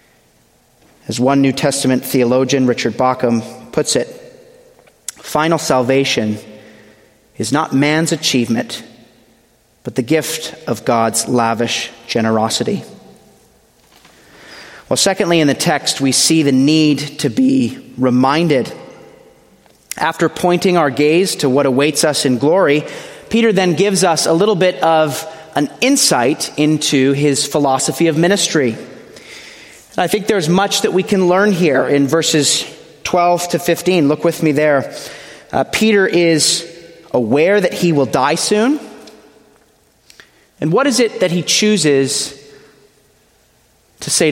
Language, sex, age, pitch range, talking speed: English, male, 30-49, 135-185 Hz, 130 wpm